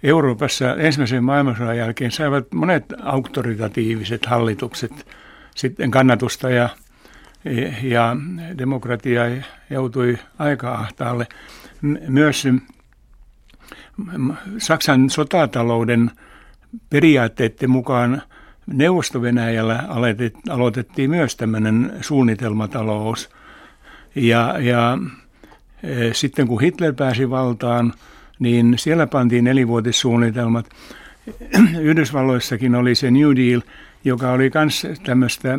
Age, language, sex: 60-79, Finnish, male